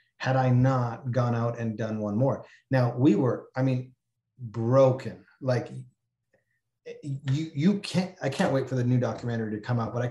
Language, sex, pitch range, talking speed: English, male, 115-135 Hz, 185 wpm